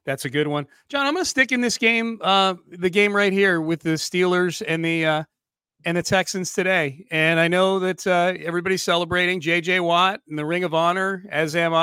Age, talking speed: 40-59, 220 wpm